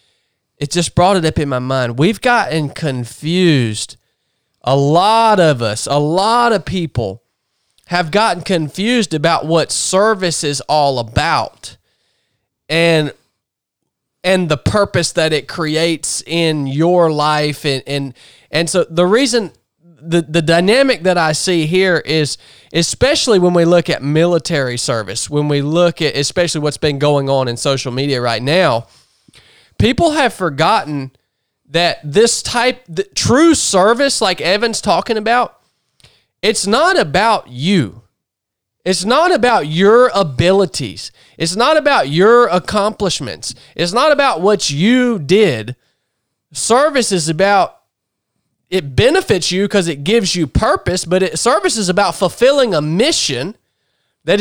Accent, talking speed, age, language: American, 140 wpm, 20-39, English